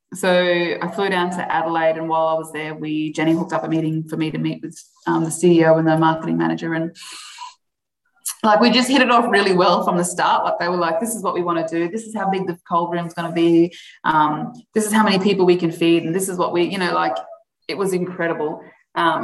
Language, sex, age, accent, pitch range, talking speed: English, female, 20-39, Australian, 160-195 Hz, 260 wpm